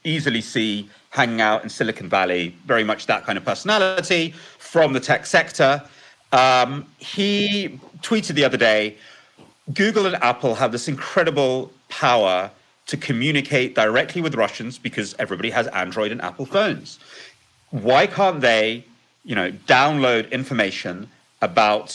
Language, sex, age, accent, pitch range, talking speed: English, male, 30-49, British, 115-175 Hz, 135 wpm